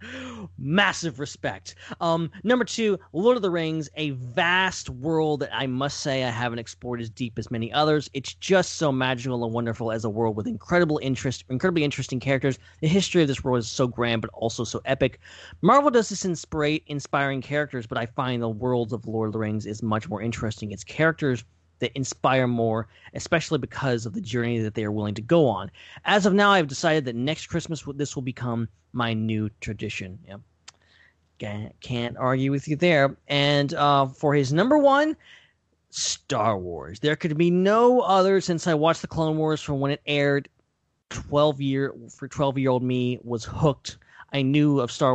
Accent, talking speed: American, 190 wpm